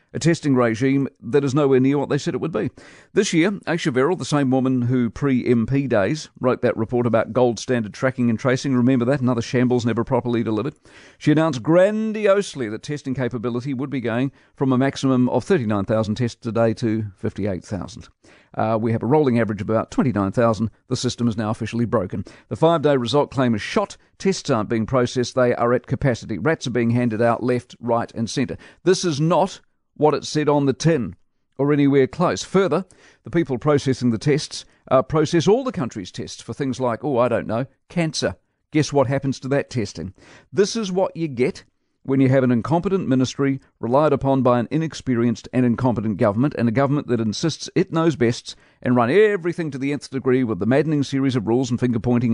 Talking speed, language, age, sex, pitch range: 200 wpm, English, 50-69, male, 120-150 Hz